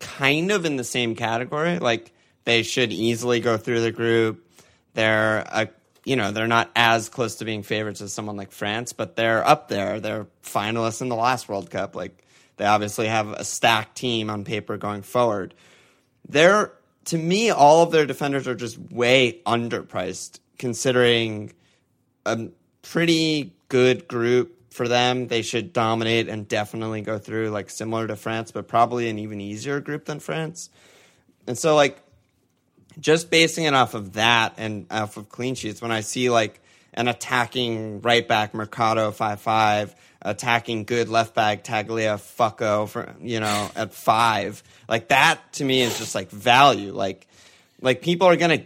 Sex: male